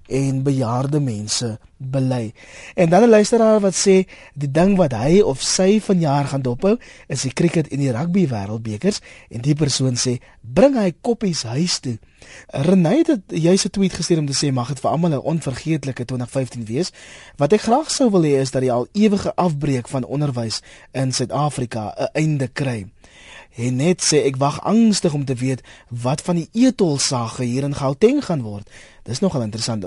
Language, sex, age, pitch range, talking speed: Dutch, male, 20-39, 120-180 Hz, 195 wpm